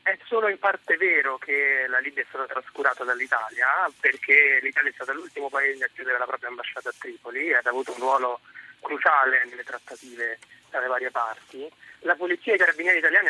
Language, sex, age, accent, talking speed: Italian, male, 30-49, native, 195 wpm